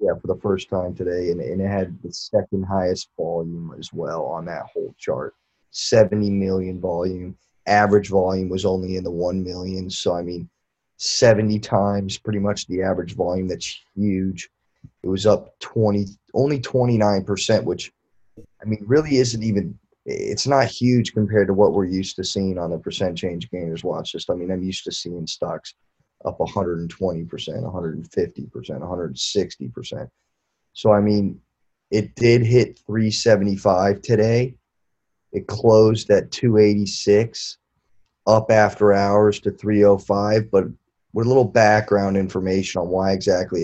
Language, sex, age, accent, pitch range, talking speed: English, male, 20-39, American, 95-110 Hz, 145 wpm